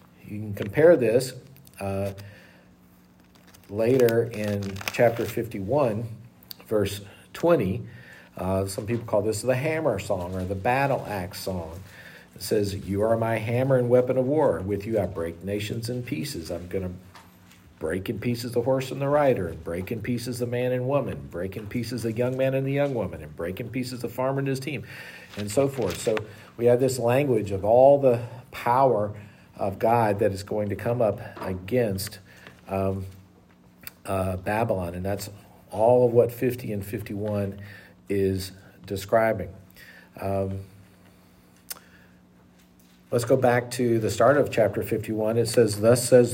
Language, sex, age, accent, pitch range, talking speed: English, male, 50-69, American, 95-120 Hz, 165 wpm